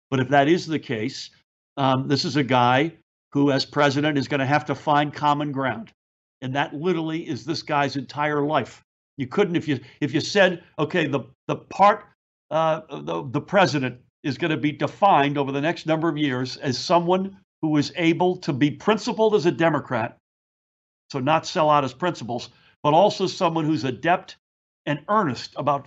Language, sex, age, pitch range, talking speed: English, male, 60-79, 135-165 Hz, 190 wpm